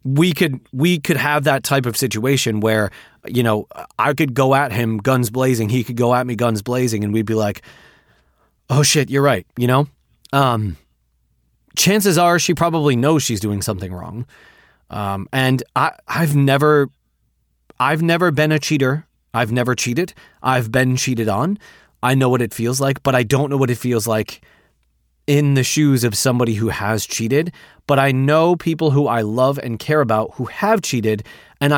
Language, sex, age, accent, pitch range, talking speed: English, male, 30-49, American, 115-145 Hz, 185 wpm